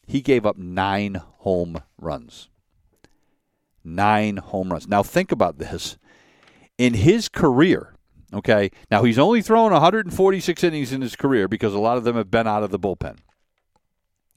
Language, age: English, 50-69